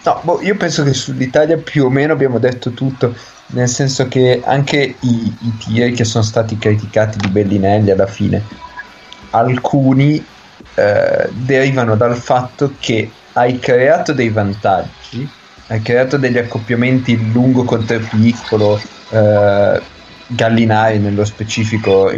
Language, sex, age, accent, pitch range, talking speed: Italian, male, 20-39, native, 110-145 Hz, 130 wpm